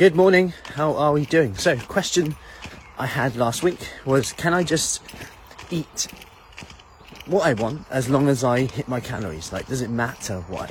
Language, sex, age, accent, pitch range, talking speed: English, male, 30-49, British, 110-140 Hz, 180 wpm